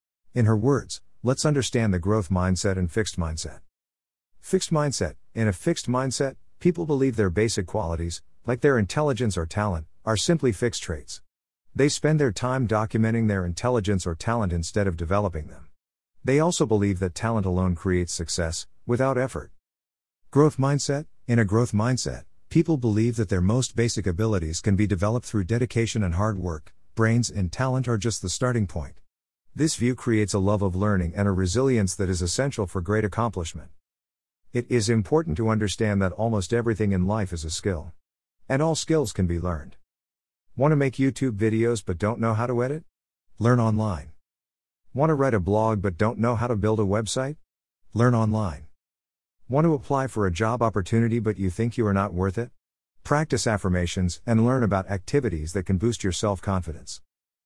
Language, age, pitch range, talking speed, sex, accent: English, 50-69, 90-120 Hz, 180 wpm, male, American